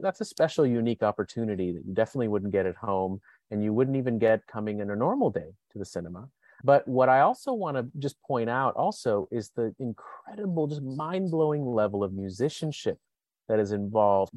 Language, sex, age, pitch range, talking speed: English, male, 30-49, 105-125 Hz, 190 wpm